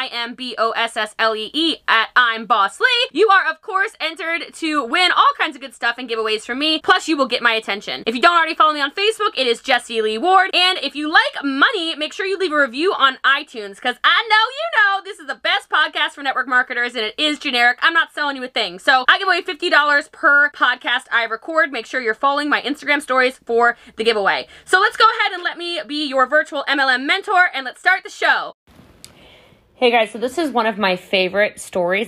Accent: American